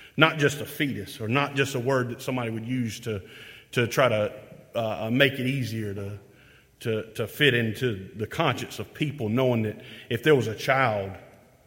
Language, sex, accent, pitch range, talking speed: English, male, American, 115-155 Hz, 190 wpm